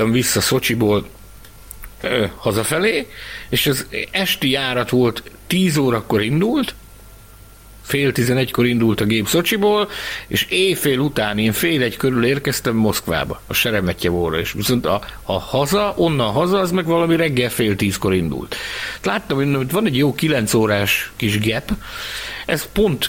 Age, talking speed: 60-79, 140 wpm